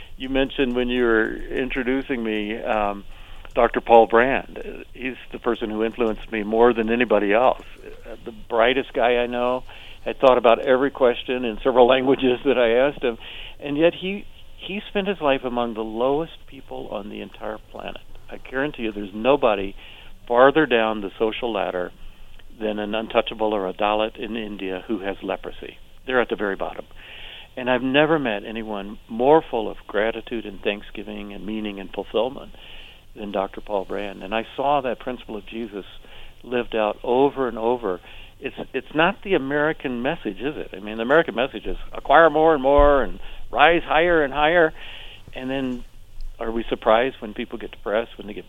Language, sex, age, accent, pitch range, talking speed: English, male, 50-69, American, 105-135 Hz, 180 wpm